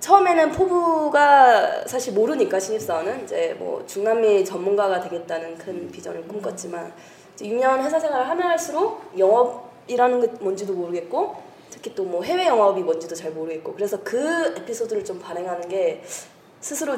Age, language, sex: 20-39, Korean, female